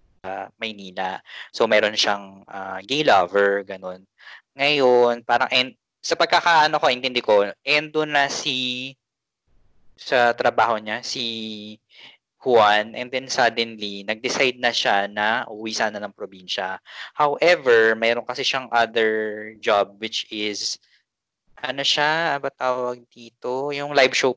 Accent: Filipino